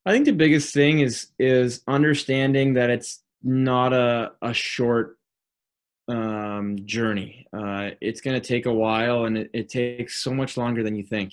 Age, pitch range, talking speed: 20-39, 100-115 Hz, 175 wpm